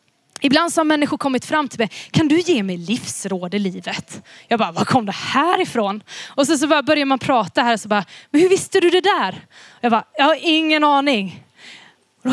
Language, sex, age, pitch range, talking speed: Swedish, female, 20-39, 215-275 Hz, 215 wpm